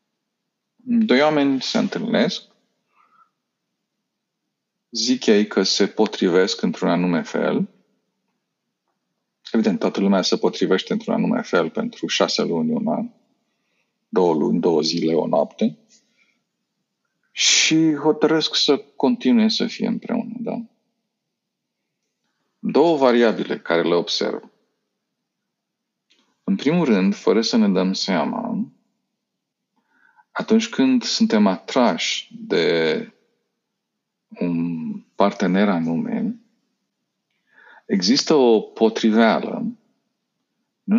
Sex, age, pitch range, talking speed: male, 50-69, 145-230 Hz, 95 wpm